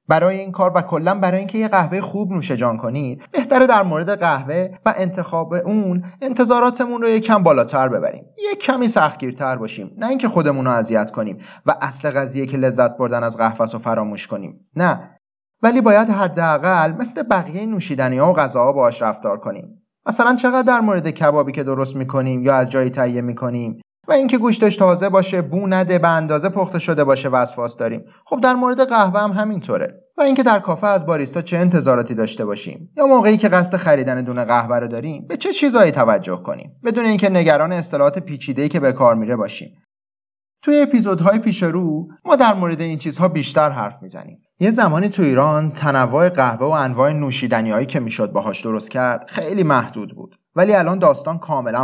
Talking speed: 185 wpm